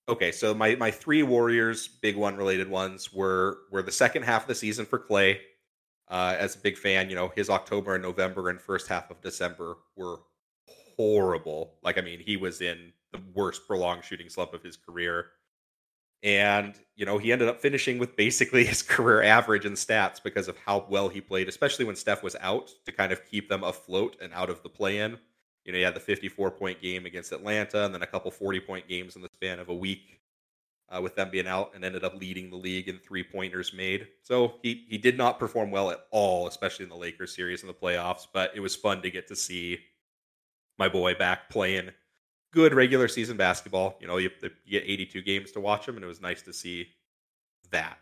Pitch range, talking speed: 90-105 Hz, 215 wpm